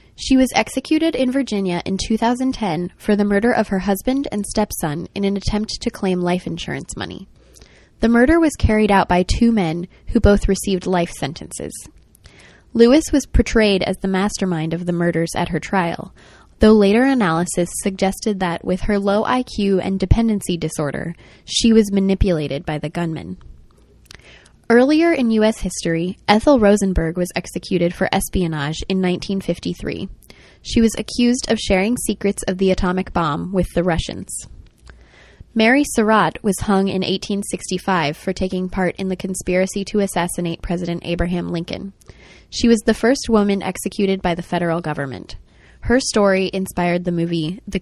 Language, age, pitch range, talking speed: English, 10-29, 175-215 Hz, 155 wpm